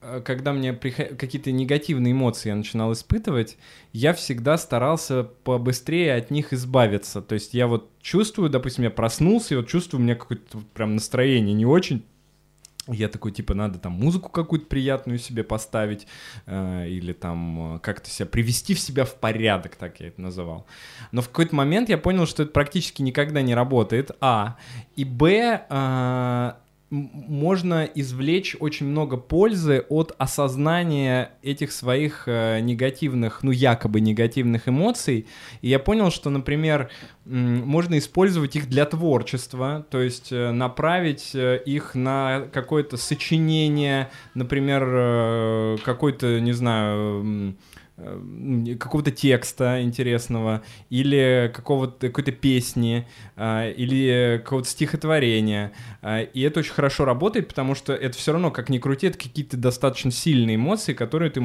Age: 20-39